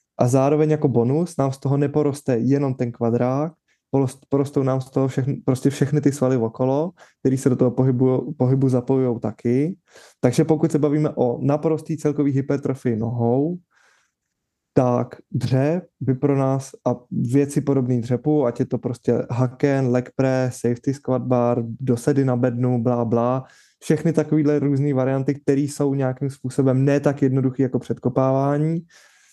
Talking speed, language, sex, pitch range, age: 150 wpm, Czech, male, 125-145 Hz, 20-39